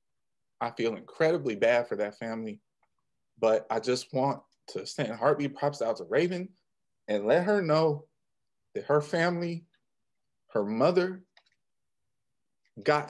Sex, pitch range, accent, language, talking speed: male, 120-165 Hz, American, English, 130 wpm